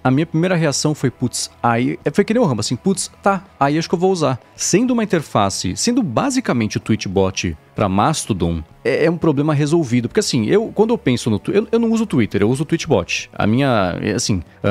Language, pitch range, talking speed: Portuguese, 115-185 Hz, 230 wpm